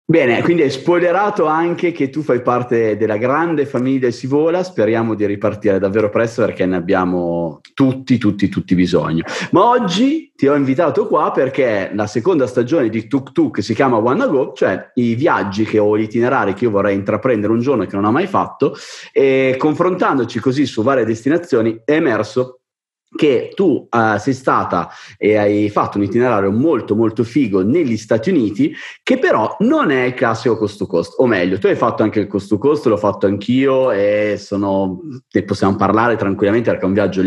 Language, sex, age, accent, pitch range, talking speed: Italian, male, 30-49, native, 100-130 Hz, 185 wpm